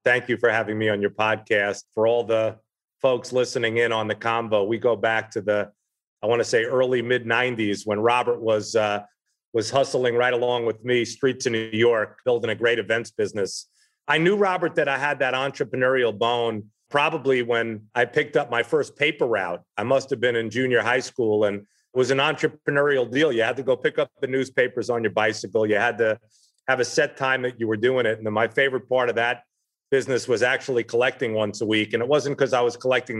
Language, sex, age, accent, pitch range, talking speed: English, male, 40-59, American, 115-135 Hz, 225 wpm